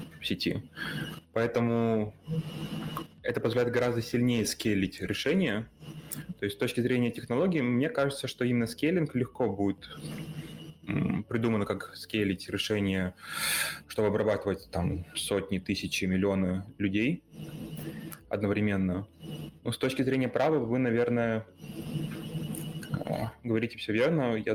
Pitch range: 100-125 Hz